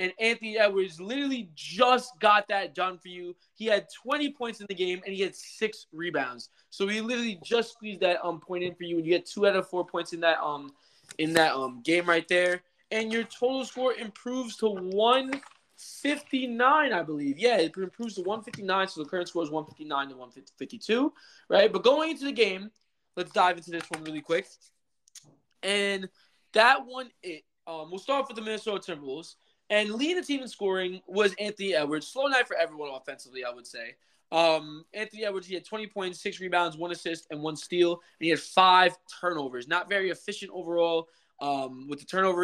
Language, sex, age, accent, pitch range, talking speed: English, male, 20-39, American, 155-220 Hz, 200 wpm